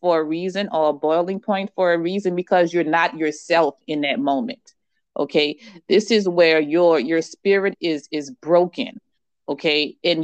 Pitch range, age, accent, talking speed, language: 160-210 Hz, 30-49, American, 170 wpm, English